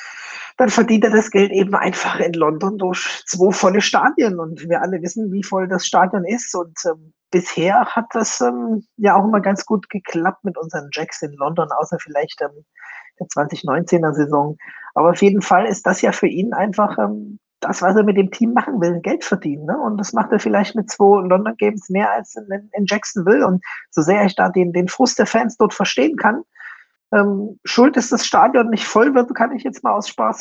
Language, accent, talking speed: German, German, 205 wpm